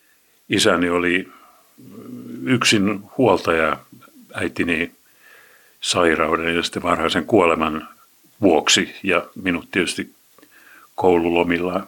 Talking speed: 70 wpm